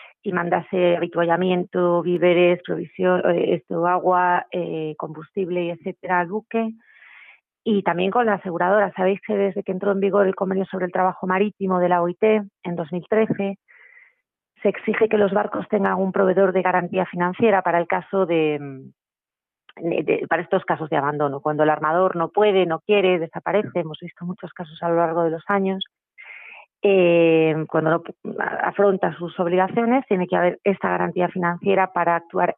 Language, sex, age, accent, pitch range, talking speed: Spanish, female, 30-49, Spanish, 170-190 Hz, 155 wpm